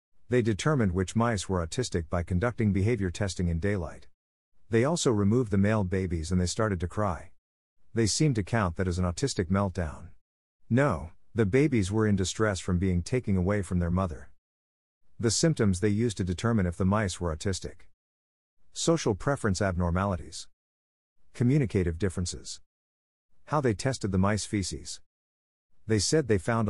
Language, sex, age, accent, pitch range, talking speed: English, male, 50-69, American, 90-110 Hz, 160 wpm